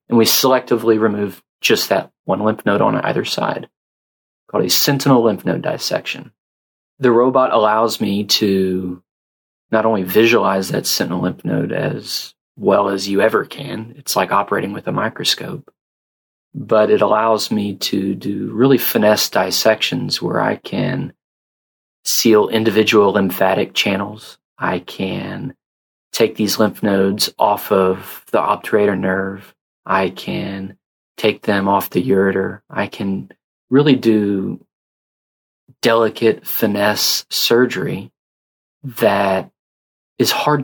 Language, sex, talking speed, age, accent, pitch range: English, male, 125 wpm, 30-49, American, 95-115 Hz